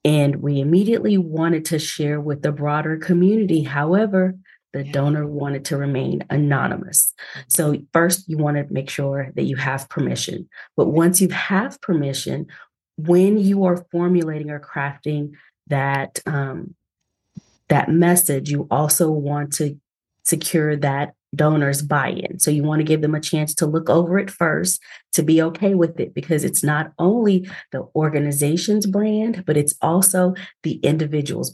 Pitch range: 145-175 Hz